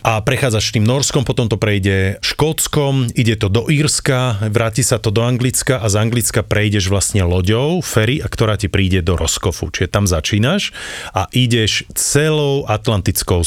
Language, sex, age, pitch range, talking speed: Slovak, male, 30-49, 95-115 Hz, 165 wpm